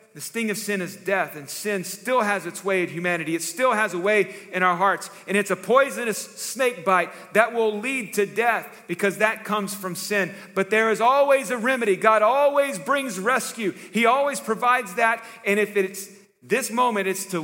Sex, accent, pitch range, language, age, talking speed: male, American, 170-205 Hz, English, 40-59, 205 wpm